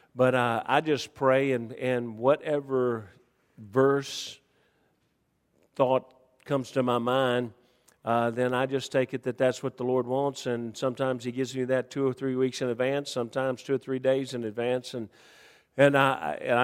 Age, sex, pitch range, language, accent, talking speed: 50-69, male, 120-140 Hz, English, American, 175 wpm